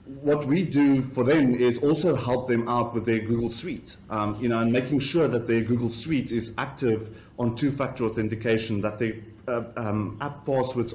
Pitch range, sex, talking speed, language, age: 115-140 Hz, male, 190 wpm, English, 30-49